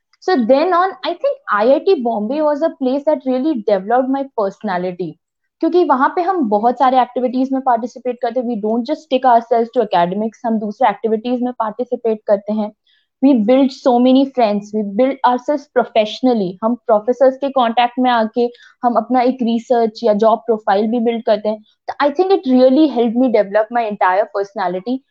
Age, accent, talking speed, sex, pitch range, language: 20-39, native, 180 wpm, female, 225-265 Hz, Hindi